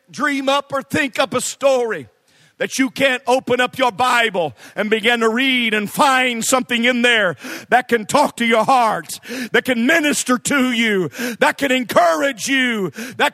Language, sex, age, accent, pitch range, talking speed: English, male, 50-69, American, 215-285 Hz, 175 wpm